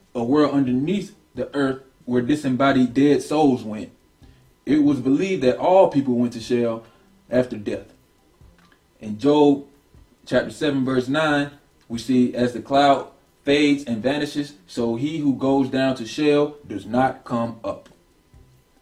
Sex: male